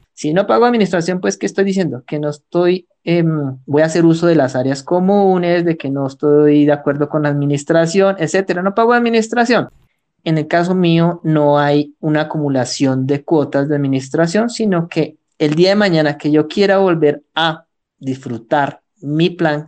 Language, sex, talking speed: Spanish, male, 180 wpm